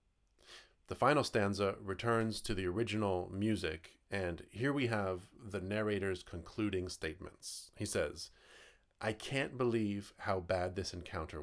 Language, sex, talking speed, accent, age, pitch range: English, male, 130 wpm, American, 30-49, 90-115 Hz